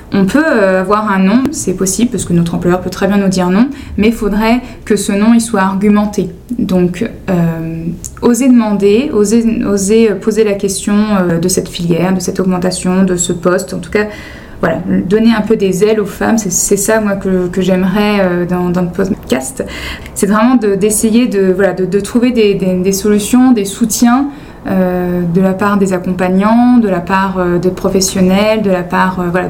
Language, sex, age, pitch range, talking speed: French, female, 20-39, 185-220 Hz, 200 wpm